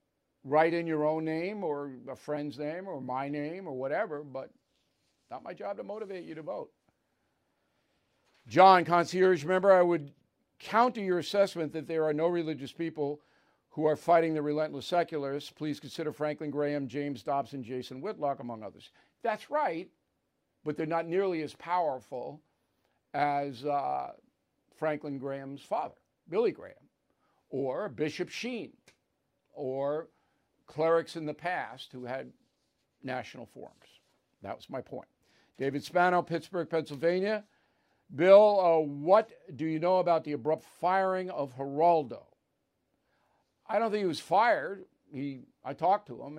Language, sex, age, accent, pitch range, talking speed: English, male, 60-79, American, 145-180 Hz, 145 wpm